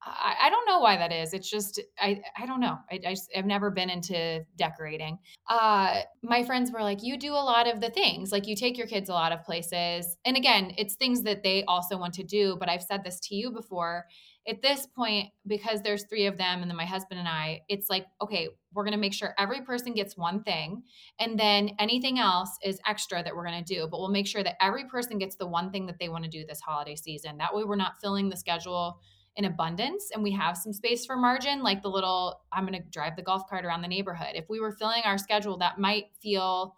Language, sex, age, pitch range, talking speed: English, female, 20-39, 180-220 Hz, 250 wpm